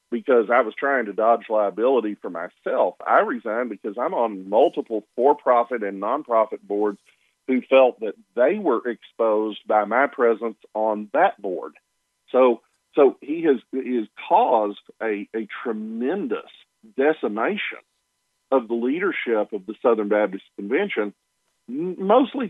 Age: 50-69